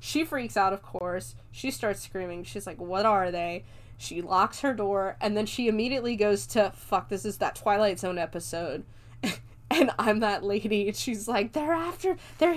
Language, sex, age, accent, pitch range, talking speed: English, female, 10-29, American, 175-230 Hz, 190 wpm